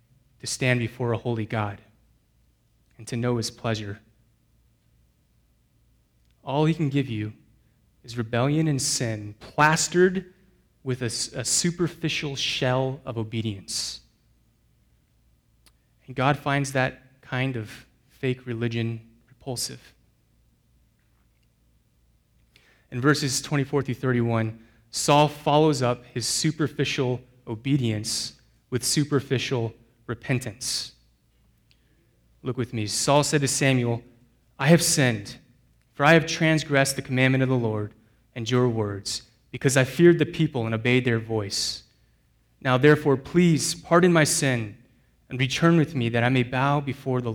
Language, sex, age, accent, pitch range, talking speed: English, male, 30-49, American, 115-140 Hz, 125 wpm